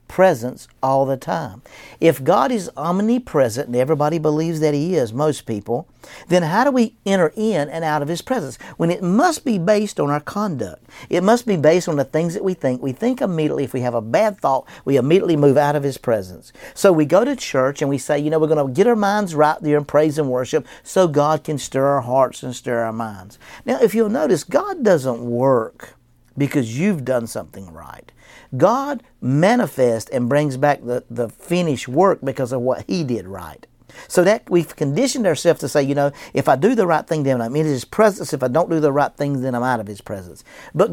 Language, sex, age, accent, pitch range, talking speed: English, male, 50-69, American, 130-185 Hz, 225 wpm